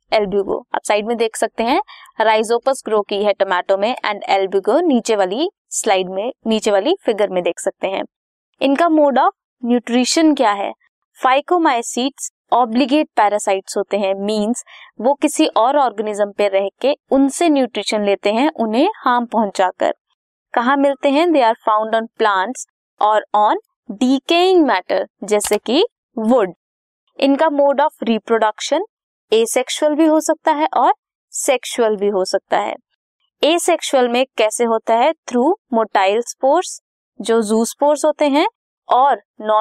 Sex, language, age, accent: female, Hindi, 20-39, native